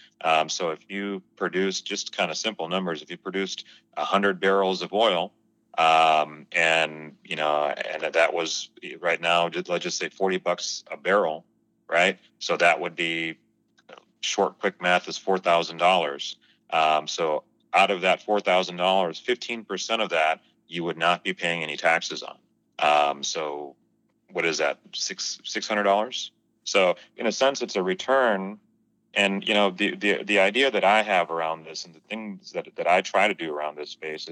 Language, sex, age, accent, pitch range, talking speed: English, male, 30-49, American, 80-100 Hz, 175 wpm